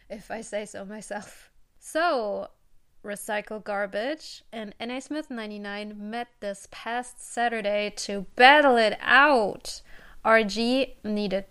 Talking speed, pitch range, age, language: 115 wpm, 205-255 Hz, 20-39, English